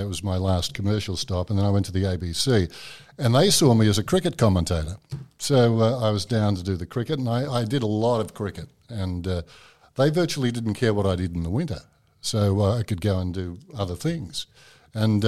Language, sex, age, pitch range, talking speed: English, male, 50-69, 100-125 Hz, 235 wpm